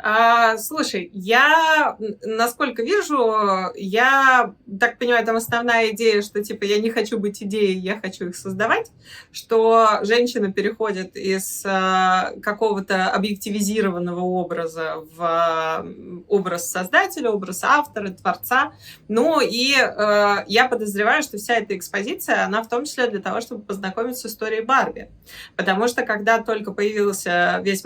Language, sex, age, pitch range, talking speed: Russian, female, 20-39, 200-255 Hz, 130 wpm